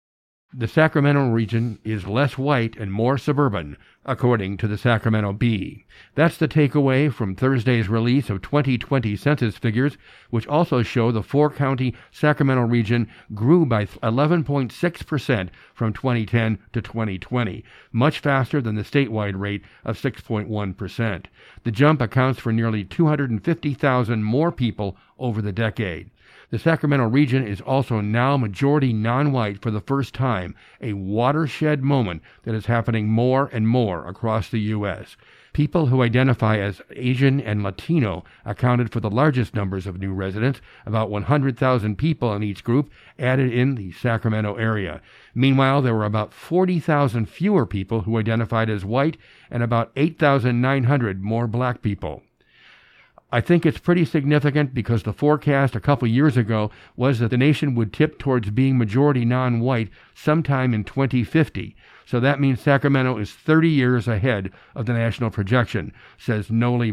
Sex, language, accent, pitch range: male, English, American, 110-140 Hz